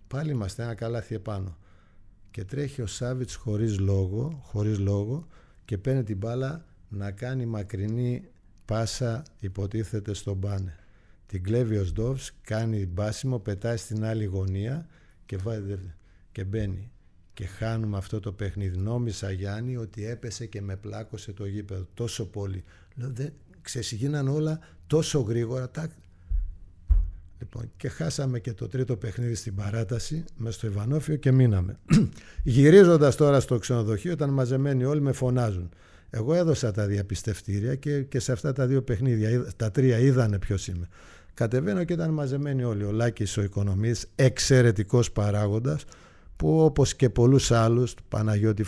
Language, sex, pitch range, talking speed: Greek, male, 100-125 Hz, 140 wpm